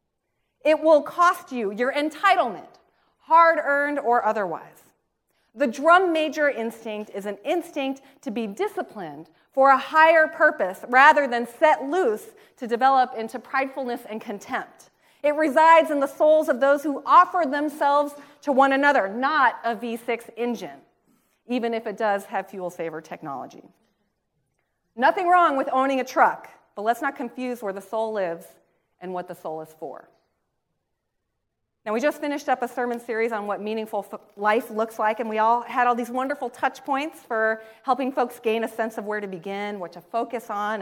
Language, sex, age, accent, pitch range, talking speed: English, female, 30-49, American, 215-290 Hz, 170 wpm